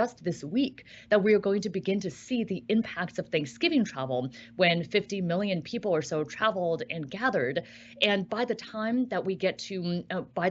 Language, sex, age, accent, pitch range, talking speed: English, female, 30-49, American, 175-215 Hz, 200 wpm